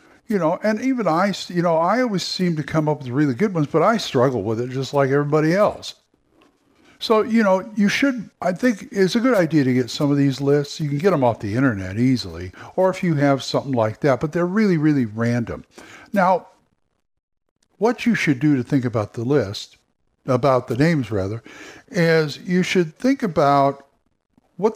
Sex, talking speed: male, 200 wpm